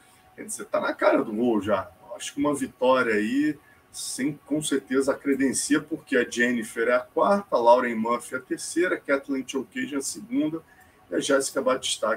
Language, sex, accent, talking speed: Portuguese, male, Brazilian, 190 wpm